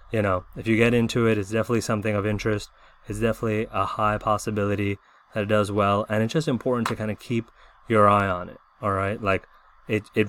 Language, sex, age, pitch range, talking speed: English, male, 20-39, 100-115 Hz, 220 wpm